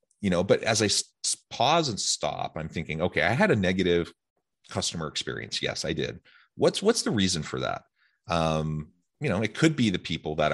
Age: 30-49